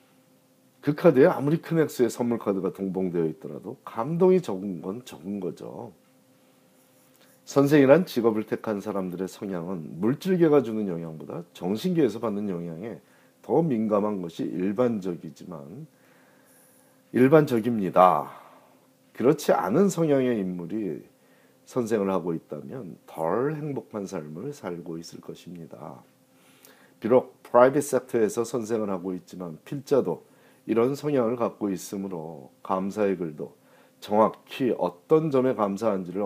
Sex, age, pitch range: male, 40-59, 95-135 Hz